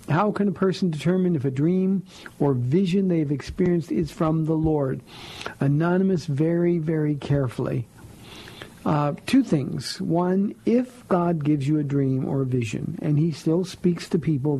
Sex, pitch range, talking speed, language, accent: male, 140-170 Hz, 160 wpm, English, American